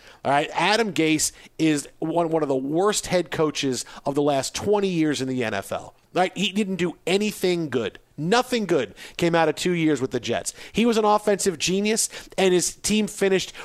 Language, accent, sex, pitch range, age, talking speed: English, American, male, 155-200 Hz, 40-59, 200 wpm